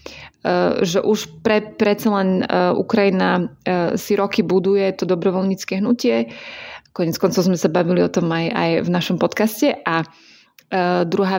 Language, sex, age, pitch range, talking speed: Slovak, female, 20-39, 175-195 Hz, 150 wpm